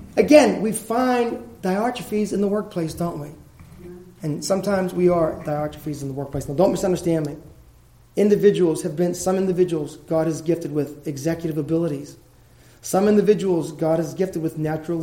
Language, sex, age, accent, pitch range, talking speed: English, male, 30-49, American, 150-195 Hz, 155 wpm